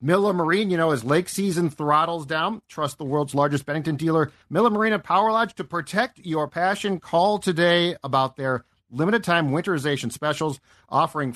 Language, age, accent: English, 50-69, American